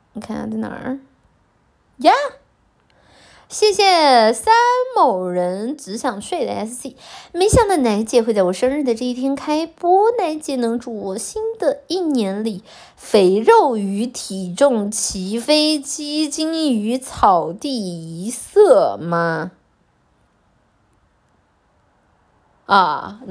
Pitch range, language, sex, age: 190-320 Hz, Chinese, female, 20-39